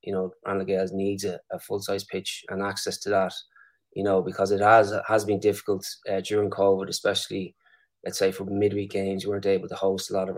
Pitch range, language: 95-105 Hz, English